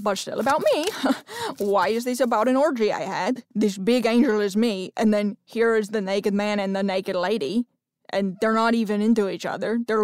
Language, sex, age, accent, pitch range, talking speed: English, female, 20-39, American, 220-285 Hz, 215 wpm